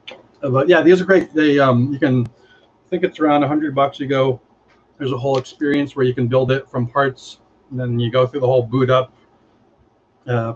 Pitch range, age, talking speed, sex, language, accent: 115-145 Hz, 40-59, 220 wpm, male, English, American